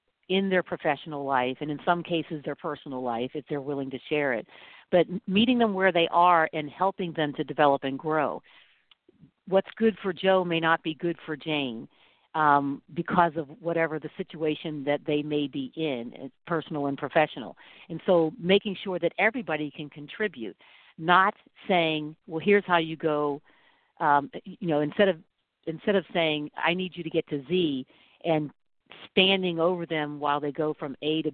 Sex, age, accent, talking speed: female, 50-69, American, 180 wpm